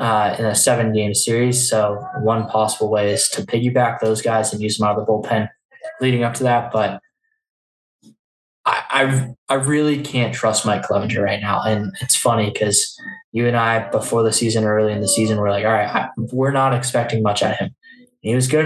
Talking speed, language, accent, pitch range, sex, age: 210 wpm, English, American, 110-125 Hz, male, 10-29